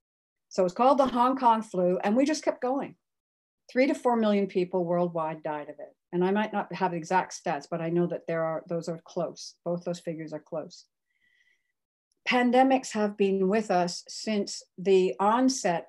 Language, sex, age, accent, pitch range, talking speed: English, female, 60-79, American, 170-210 Hz, 190 wpm